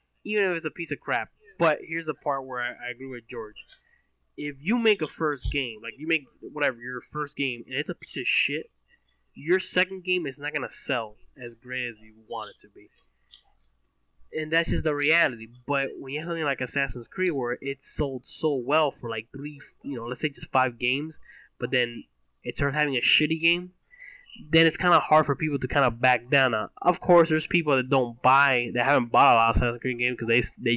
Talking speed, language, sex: 230 wpm, English, male